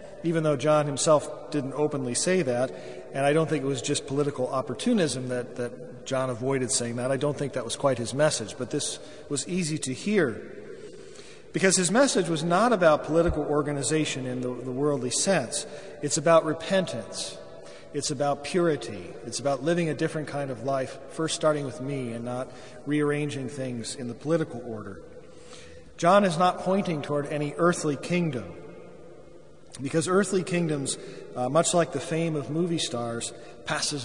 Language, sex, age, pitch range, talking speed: English, male, 40-59, 130-170 Hz, 170 wpm